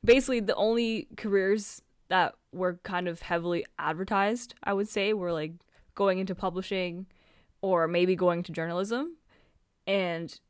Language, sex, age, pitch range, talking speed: English, female, 20-39, 155-195 Hz, 135 wpm